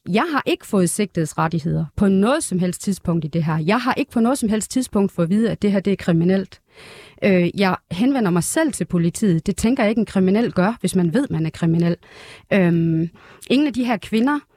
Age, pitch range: 30-49, 170-210 Hz